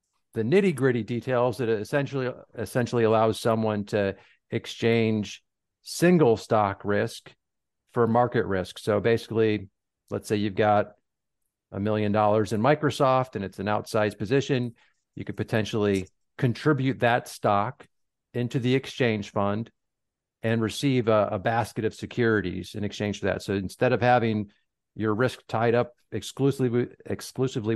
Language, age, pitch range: English, 50-69, 105-125 Hz